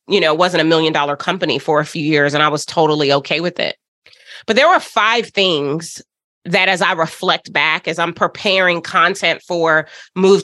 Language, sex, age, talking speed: English, female, 30-49, 200 wpm